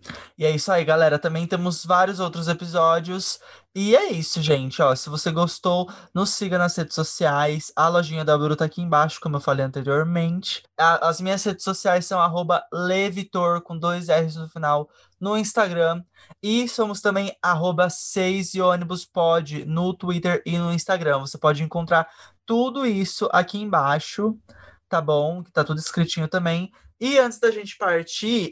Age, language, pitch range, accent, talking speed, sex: 20-39, Portuguese, 155-190 Hz, Brazilian, 160 wpm, male